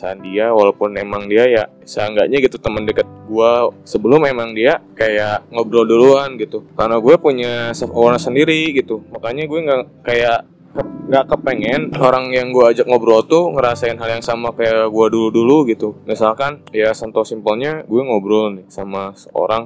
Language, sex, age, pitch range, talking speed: Indonesian, male, 20-39, 105-125 Hz, 160 wpm